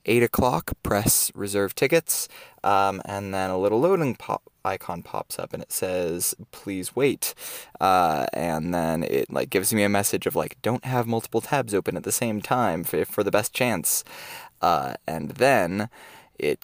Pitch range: 100-140 Hz